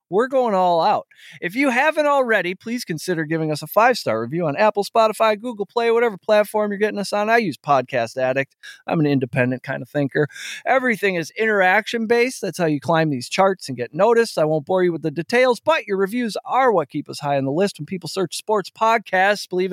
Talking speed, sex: 220 wpm, male